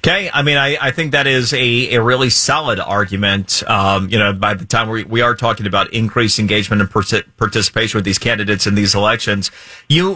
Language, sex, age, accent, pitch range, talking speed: English, male, 30-49, American, 110-135 Hz, 215 wpm